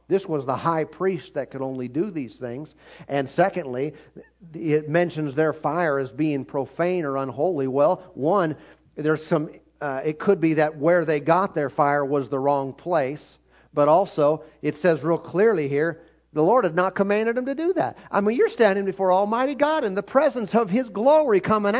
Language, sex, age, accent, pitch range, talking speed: English, male, 50-69, American, 150-220 Hz, 195 wpm